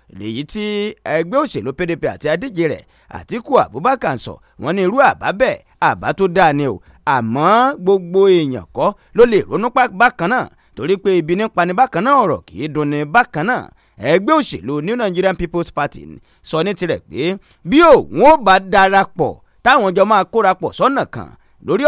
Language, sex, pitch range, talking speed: English, male, 165-230 Hz, 155 wpm